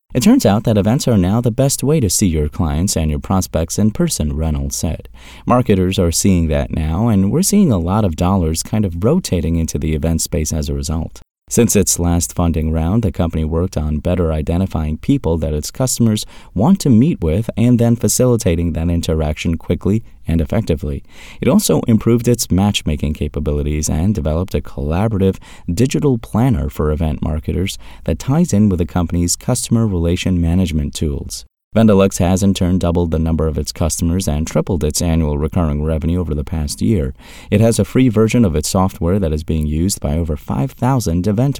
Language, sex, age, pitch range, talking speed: English, male, 30-49, 80-110 Hz, 190 wpm